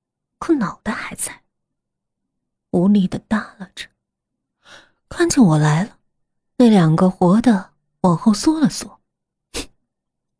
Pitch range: 180-250 Hz